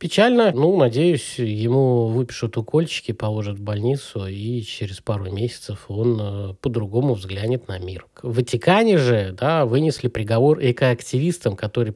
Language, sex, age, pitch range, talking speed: Russian, male, 20-39, 115-140 Hz, 135 wpm